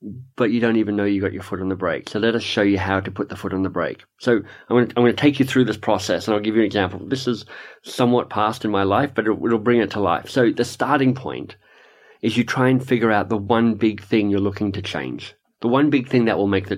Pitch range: 105-145 Hz